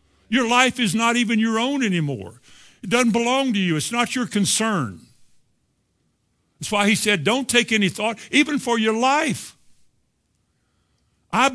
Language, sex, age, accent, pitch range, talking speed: English, male, 60-79, American, 135-225 Hz, 155 wpm